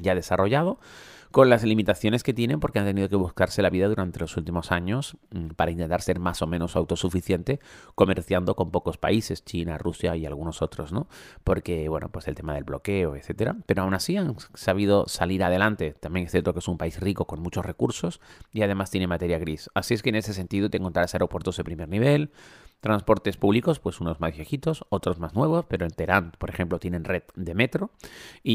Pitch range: 85-105 Hz